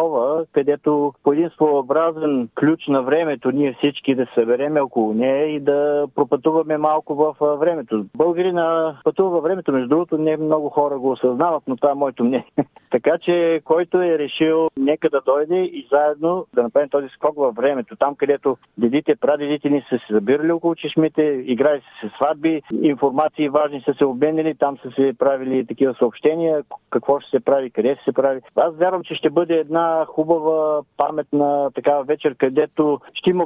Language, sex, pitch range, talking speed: Bulgarian, male, 145-170 Hz, 165 wpm